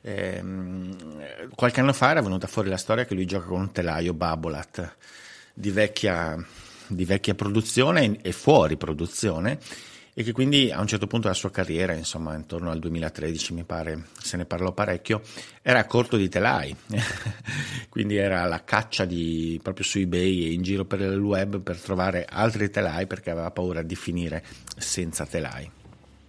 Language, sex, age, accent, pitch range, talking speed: Italian, male, 50-69, native, 85-105 Hz, 170 wpm